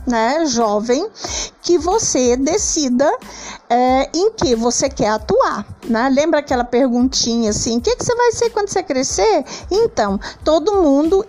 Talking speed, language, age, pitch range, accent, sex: 145 wpm, Portuguese, 50-69, 230-295 Hz, Brazilian, female